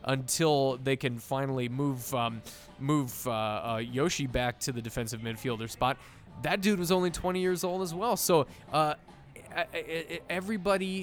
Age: 20-39